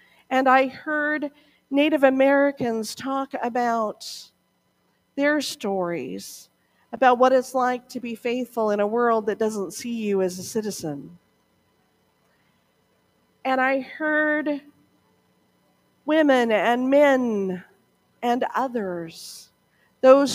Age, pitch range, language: 50-69, 190-270 Hz, English